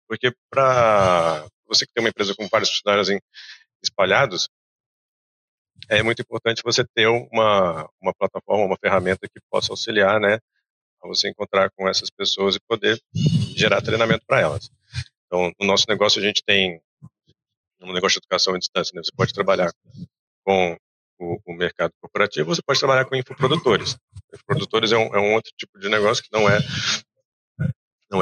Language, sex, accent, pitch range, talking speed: English, male, Brazilian, 95-120 Hz, 165 wpm